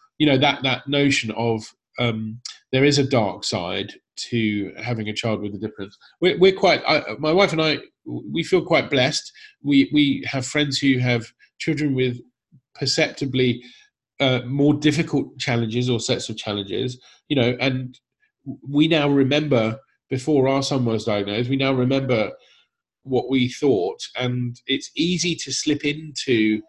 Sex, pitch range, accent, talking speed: male, 115-145 Hz, British, 160 wpm